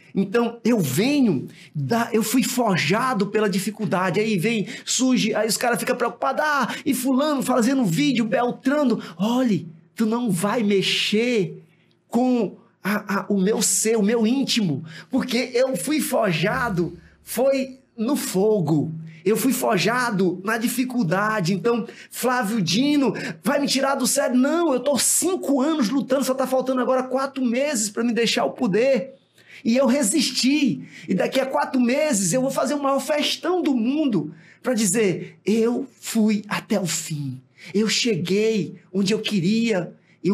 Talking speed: 155 wpm